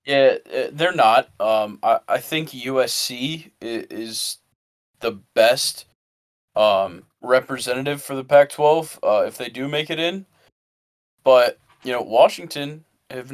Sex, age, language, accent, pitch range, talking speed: male, 20-39, English, American, 110-135 Hz, 120 wpm